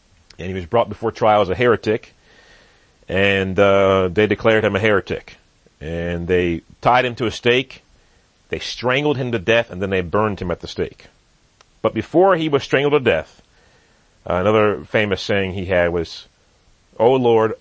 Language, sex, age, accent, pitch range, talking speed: English, male, 40-59, American, 90-110 Hz, 175 wpm